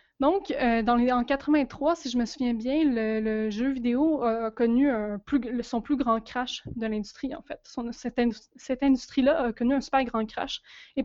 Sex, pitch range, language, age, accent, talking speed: female, 225-270 Hz, French, 20-39, Canadian, 210 wpm